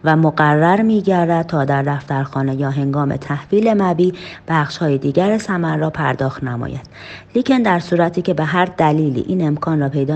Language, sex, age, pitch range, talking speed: Persian, female, 30-49, 150-180 Hz, 165 wpm